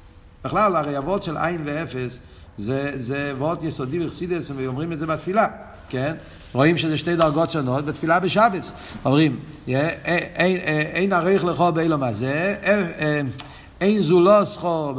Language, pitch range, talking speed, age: Hebrew, 120-170 Hz, 70 wpm, 60-79